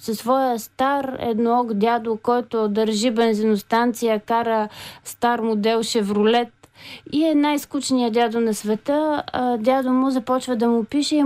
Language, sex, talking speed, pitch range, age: Bulgarian, female, 135 wpm, 220-260 Hz, 20-39